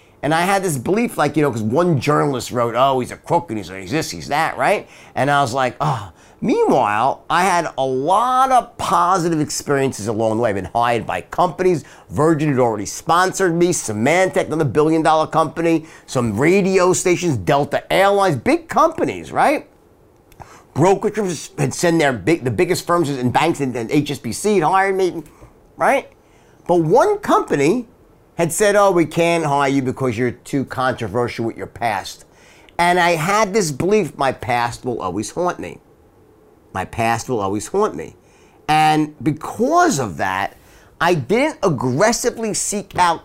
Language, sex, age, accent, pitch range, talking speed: English, male, 50-69, American, 130-190 Hz, 170 wpm